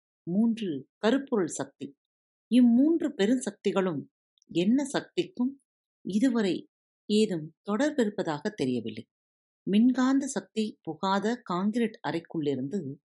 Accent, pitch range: native, 155-240 Hz